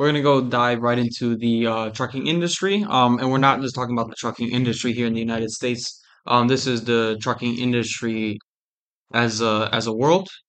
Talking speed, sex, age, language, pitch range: 205 wpm, male, 20-39, English, 110-130 Hz